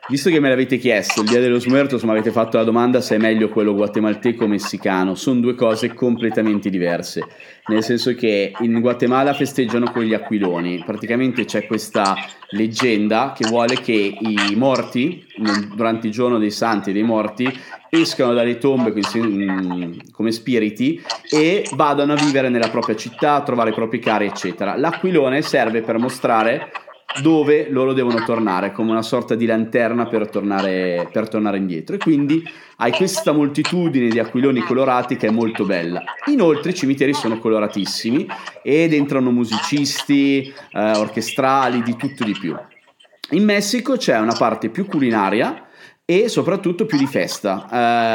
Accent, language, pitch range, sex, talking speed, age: native, Italian, 110-135 Hz, male, 160 wpm, 30-49